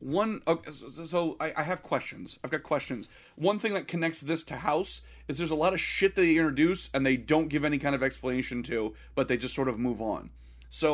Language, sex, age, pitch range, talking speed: English, male, 30-49, 125-190 Hz, 240 wpm